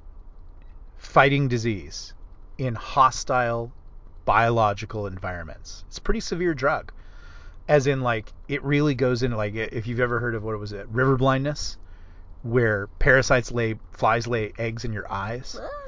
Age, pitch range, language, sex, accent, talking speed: 30-49, 100-140 Hz, English, male, American, 145 wpm